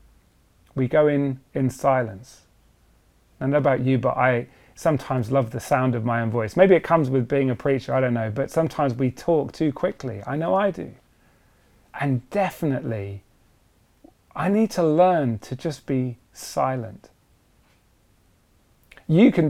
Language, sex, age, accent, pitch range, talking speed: English, male, 30-49, British, 125-165 Hz, 160 wpm